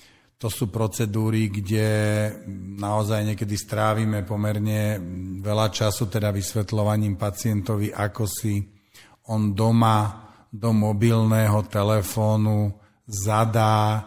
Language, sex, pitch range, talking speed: Slovak, male, 105-115 Hz, 90 wpm